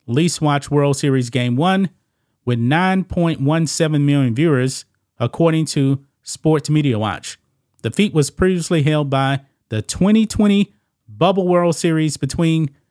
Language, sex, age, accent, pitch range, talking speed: English, male, 30-49, American, 120-165 Hz, 125 wpm